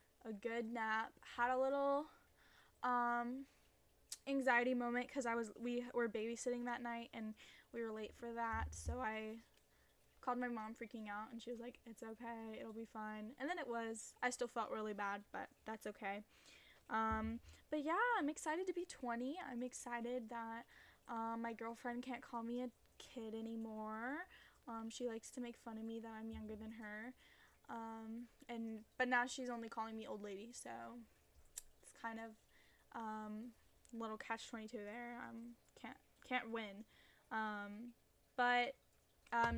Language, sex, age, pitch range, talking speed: English, female, 10-29, 220-245 Hz, 165 wpm